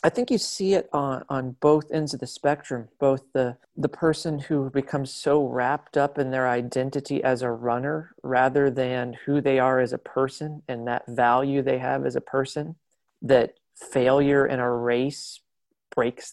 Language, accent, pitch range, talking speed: English, American, 125-145 Hz, 180 wpm